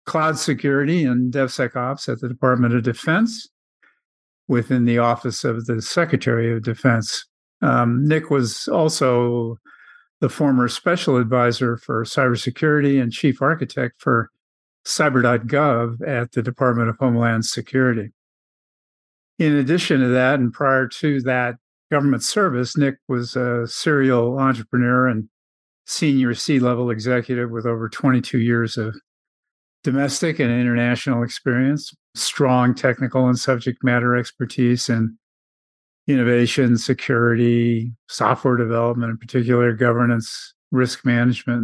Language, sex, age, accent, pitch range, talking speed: English, male, 50-69, American, 120-135 Hz, 120 wpm